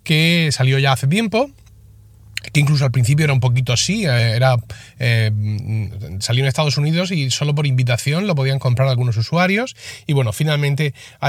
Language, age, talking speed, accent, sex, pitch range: Spanish, 30-49, 170 wpm, Spanish, male, 120-160 Hz